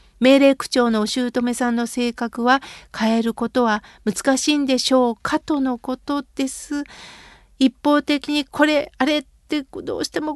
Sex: female